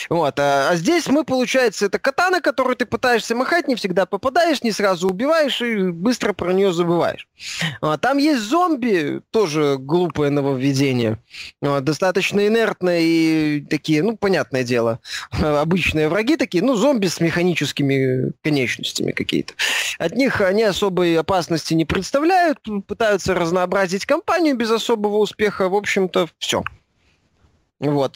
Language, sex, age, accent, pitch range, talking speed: Russian, male, 20-39, native, 150-225 Hz, 135 wpm